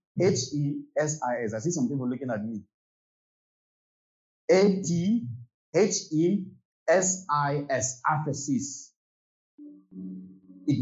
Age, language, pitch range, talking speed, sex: 50-69, English, 120-190 Hz, 110 wpm, male